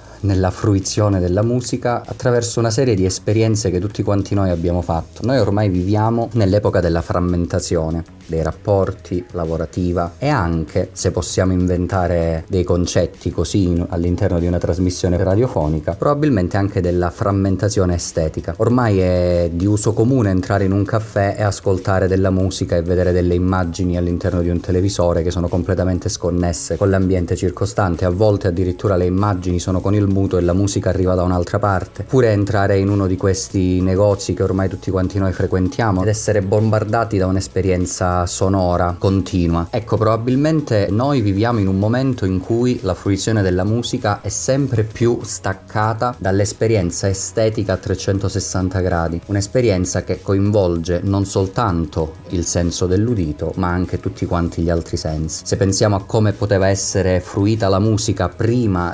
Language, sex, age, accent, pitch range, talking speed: Italian, male, 30-49, native, 90-105 Hz, 155 wpm